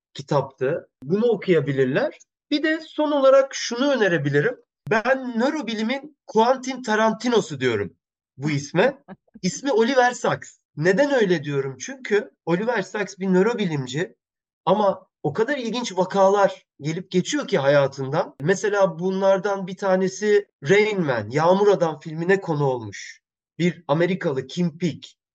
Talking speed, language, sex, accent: 120 wpm, Turkish, male, native